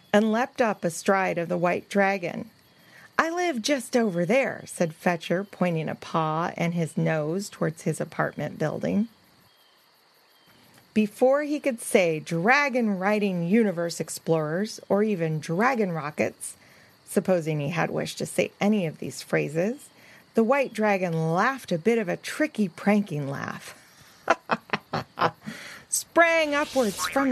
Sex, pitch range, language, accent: female, 170-230 Hz, English, American